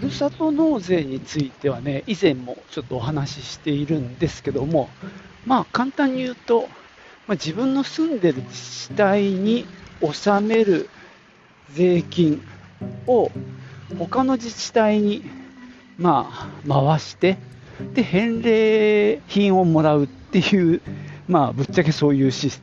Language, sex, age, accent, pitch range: Japanese, male, 50-69, native, 125-195 Hz